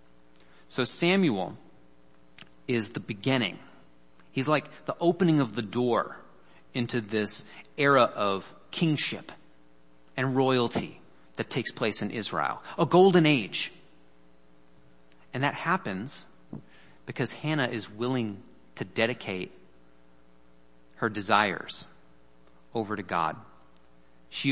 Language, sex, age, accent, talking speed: English, male, 30-49, American, 105 wpm